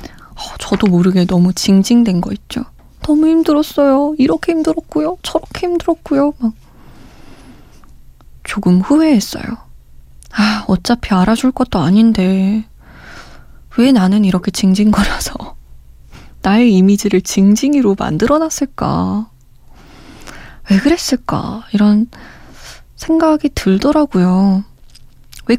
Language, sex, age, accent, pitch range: Korean, female, 20-39, native, 185-250 Hz